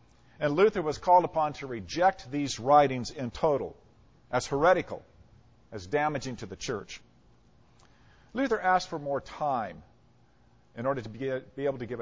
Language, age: English, 50-69